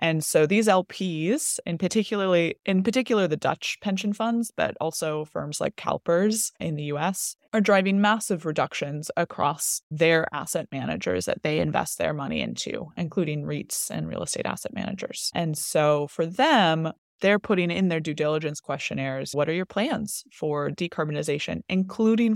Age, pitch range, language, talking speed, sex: 20-39, 150-200 Hz, English, 160 wpm, female